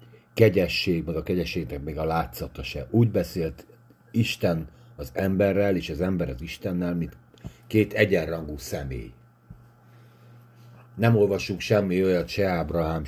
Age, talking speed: 50-69, 130 wpm